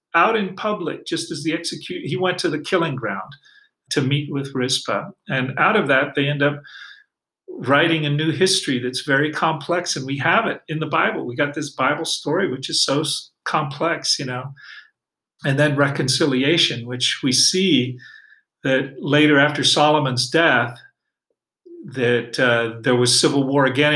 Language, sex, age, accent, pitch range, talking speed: English, male, 40-59, American, 125-160 Hz, 170 wpm